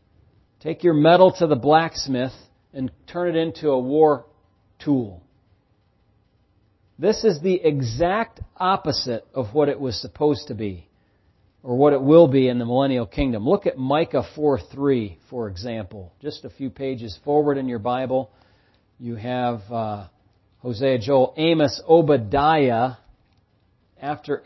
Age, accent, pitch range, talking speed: 40-59, American, 115-170 Hz, 135 wpm